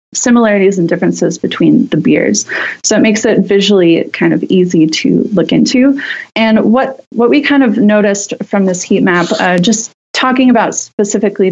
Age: 30-49